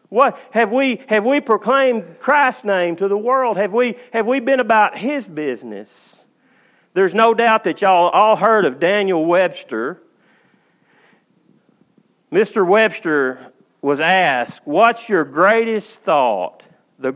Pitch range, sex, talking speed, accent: 140-205 Hz, male, 135 wpm, American